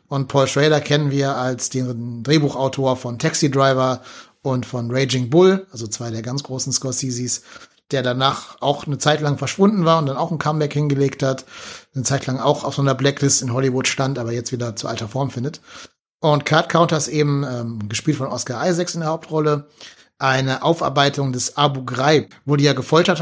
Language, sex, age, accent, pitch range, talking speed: German, male, 30-49, German, 125-150 Hz, 195 wpm